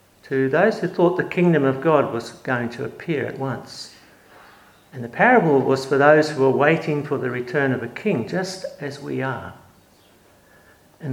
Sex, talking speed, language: male, 185 wpm, English